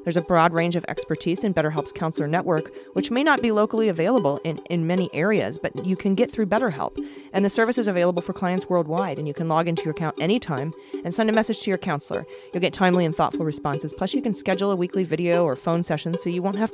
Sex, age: female, 30-49